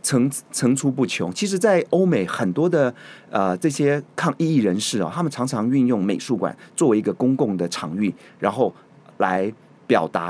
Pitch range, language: 100-155 Hz, Chinese